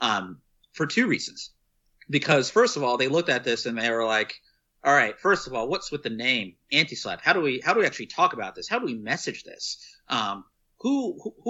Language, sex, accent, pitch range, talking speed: English, male, American, 115-165 Hz, 215 wpm